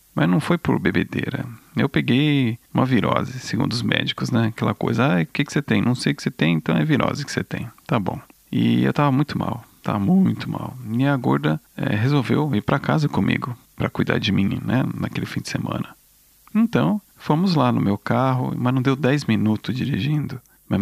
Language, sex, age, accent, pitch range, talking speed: Portuguese, male, 40-59, Brazilian, 105-150 Hz, 210 wpm